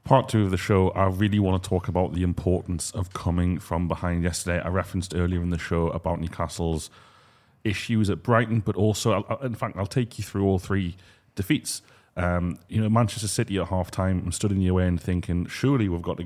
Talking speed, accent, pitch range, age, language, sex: 215 wpm, British, 90-105 Hz, 30-49, English, male